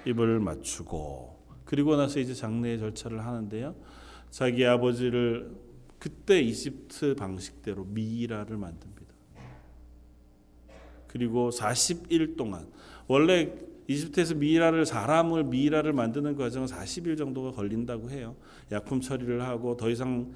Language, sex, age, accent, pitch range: Korean, male, 40-59, native, 105-140 Hz